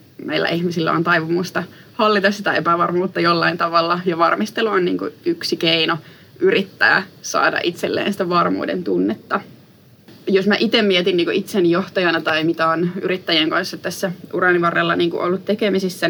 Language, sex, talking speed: Finnish, female, 155 wpm